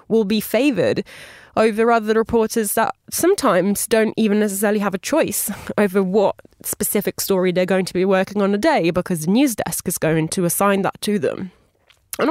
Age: 20-39